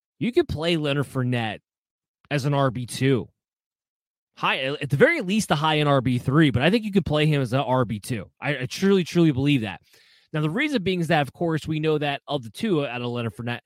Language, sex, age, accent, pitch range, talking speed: English, male, 30-49, American, 125-165 Hz, 220 wpm